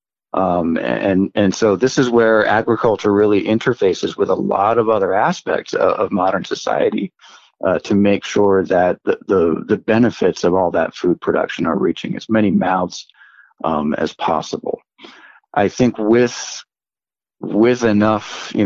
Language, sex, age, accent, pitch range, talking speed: English, male, 40-59, American, 95-115 Hz, 155 wpm